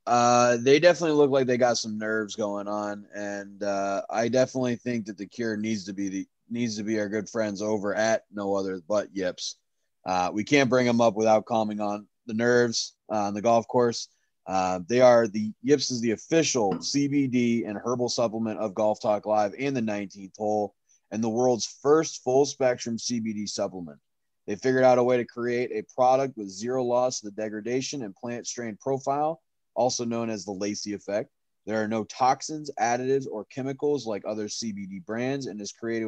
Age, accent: 20-39, American